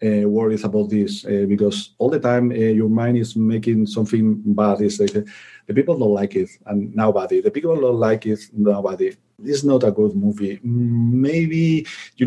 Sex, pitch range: male, 110-130 Hz